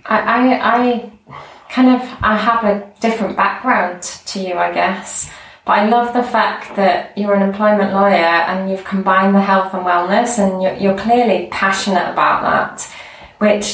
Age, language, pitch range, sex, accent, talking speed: 20-39, English, 185-210 Hz, female, British, 170 wpm